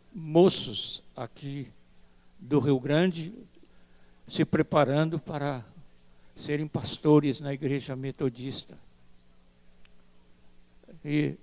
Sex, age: male, 60-79